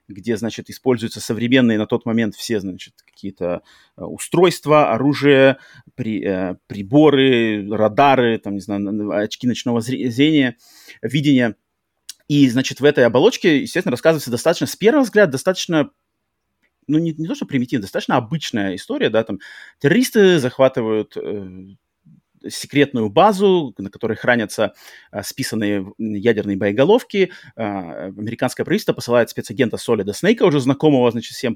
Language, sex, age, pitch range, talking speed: Russian, male, 30-49, 110-145 Hz, 130 wpm